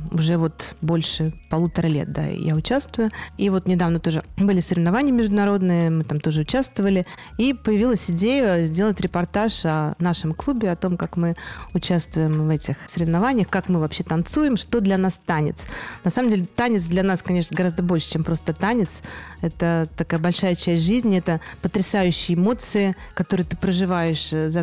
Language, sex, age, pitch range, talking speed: Russian, female, 30-49, 165-200 Hz, 165 wpm